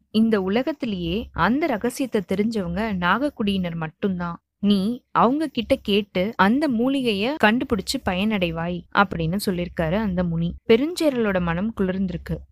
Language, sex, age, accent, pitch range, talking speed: Tamil, female, 20-39, native, 185-245 Hz, 105 wpm